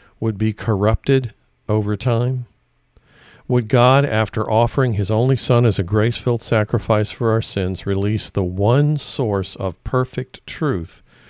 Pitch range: 95-125 Hz